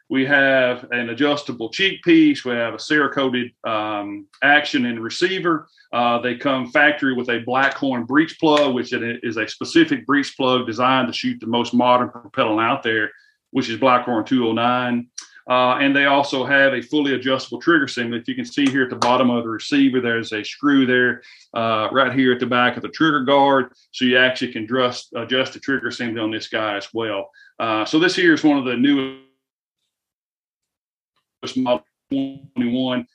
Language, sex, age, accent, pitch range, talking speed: English, male, 40-59, American, 115-140 Hz, 185 wpm